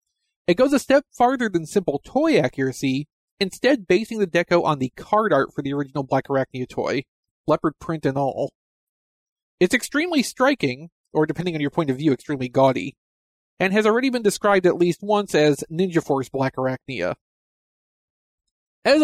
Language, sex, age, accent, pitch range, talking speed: English, male, 40-59, American, 140-200 Hz, 165 wpm